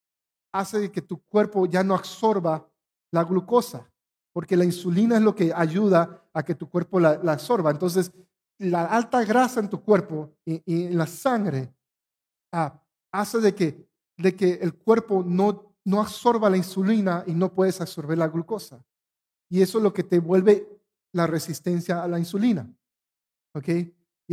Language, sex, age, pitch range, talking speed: Spanish, male, 50-69, 165-205 Hz, 170 wpm